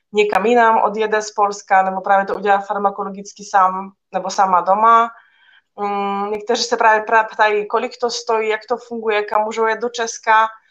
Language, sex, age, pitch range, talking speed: Czech, female, 20-39, 195-220 Hz, 155 wpm